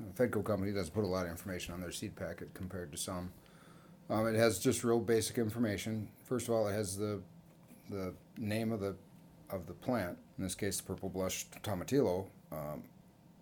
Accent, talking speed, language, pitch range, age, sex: American, 190 wpm, English, 90-115 Hz, 40-59, male